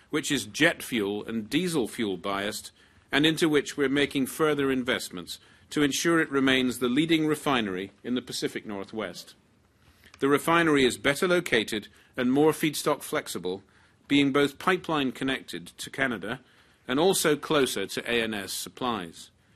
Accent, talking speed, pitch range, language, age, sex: British, 145 wpm, 105-140 Hz, English, 40-59, male